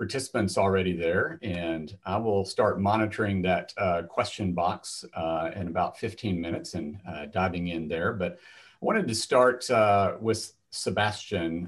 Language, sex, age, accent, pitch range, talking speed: English, male, 50-69, American, 95-115 Hz, 155 wpm